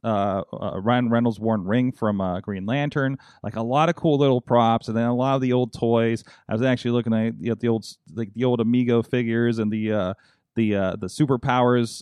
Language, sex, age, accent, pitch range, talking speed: English, male, 30-49, American, 110-130 Hz, 225 wpm